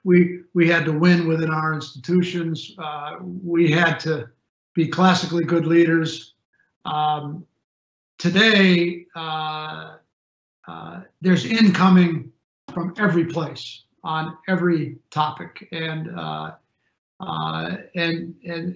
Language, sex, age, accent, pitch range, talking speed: English, male, 50-69, American, 160-185 Hz, 105 wpm